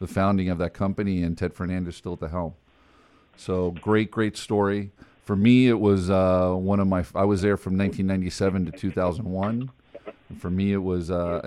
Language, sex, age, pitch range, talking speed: English, male, 40-59, 90-100 Hz, 190 wpm